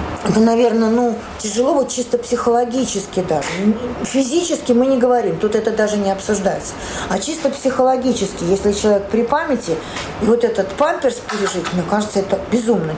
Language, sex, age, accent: Russian, female, 40-59, native